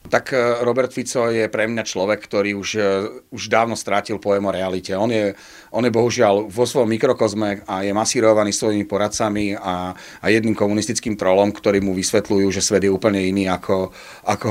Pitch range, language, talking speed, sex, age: 100-115 Hz, Slovak, 180 wpm, male, 40-59